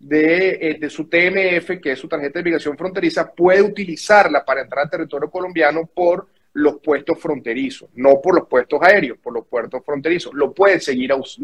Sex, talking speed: male, 180 wpm